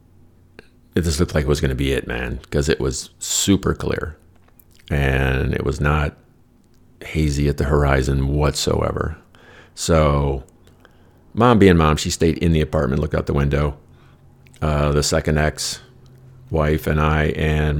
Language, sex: English, male